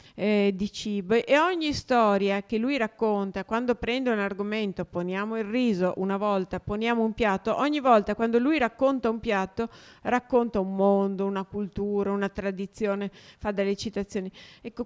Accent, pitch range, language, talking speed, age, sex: native, 195-235 Hz, Italian, 160 wpm, 50-69, female